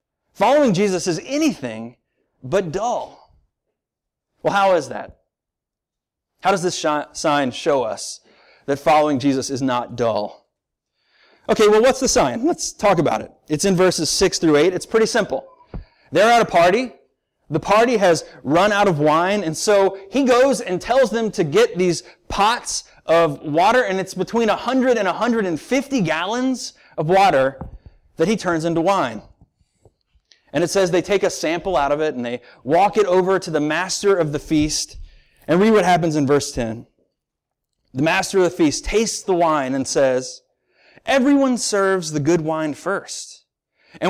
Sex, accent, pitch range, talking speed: male, American, 150-225 Hz, 165 wpm